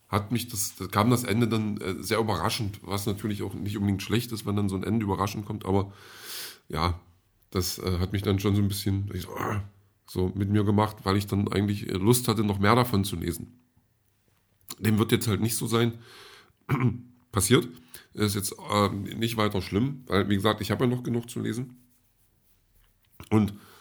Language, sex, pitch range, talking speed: German, male, 100-115 Hz, 195 wpm